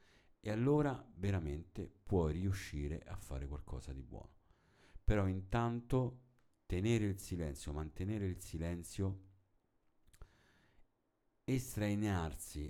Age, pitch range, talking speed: 50-69, 80-105 Hz, 90 wpm